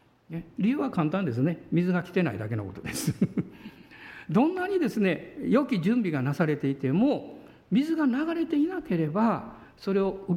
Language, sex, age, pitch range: Japanese, male, 60-79, 165-250 Hz